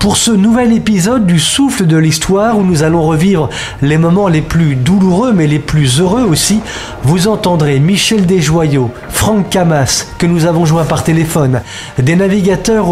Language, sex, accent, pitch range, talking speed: French, male, French, 155-200 Hz, 165 wpm